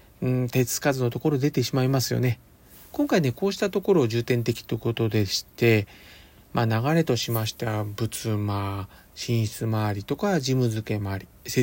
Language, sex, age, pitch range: Japanese, male, 40-59, 110-140 Hz